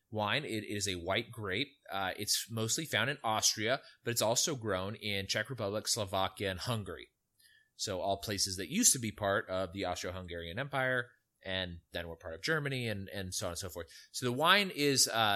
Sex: male